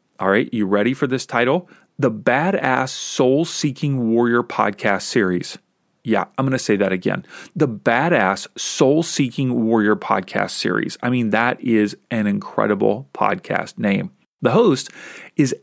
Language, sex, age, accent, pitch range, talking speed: English, male, 40-59, American, 115-165 Hz, 140 wpm